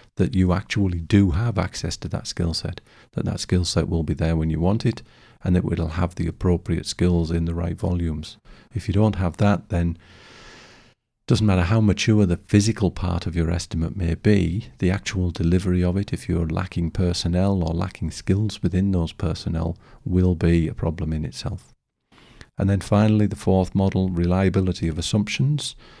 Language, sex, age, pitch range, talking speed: English, male, 50-69, 85-100 Hz, 185 wpm